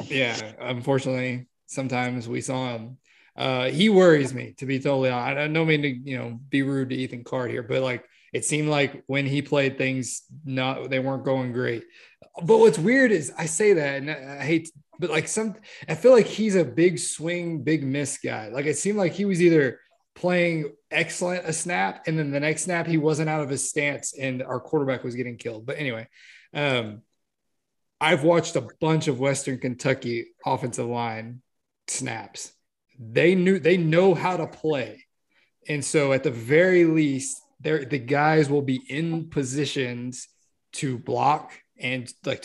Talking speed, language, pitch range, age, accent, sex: 180 wpm, English, 130-160 Hz, 20-39, American, male